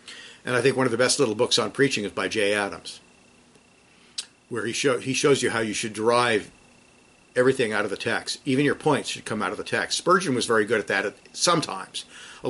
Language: English